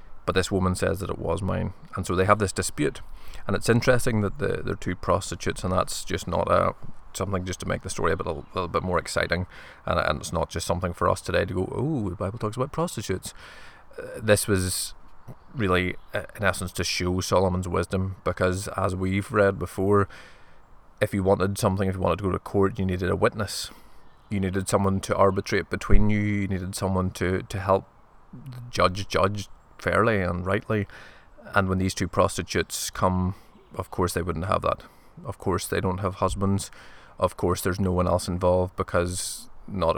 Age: 20-39